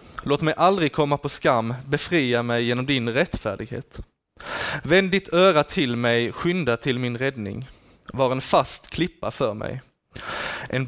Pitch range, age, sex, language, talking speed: 115-155 Hz, 20-39, male, Swedish, 150 wpm